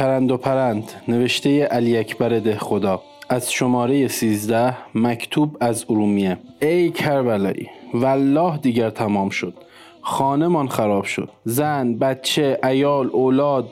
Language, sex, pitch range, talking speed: Persian, male, 120-150 Hz, 125 wpm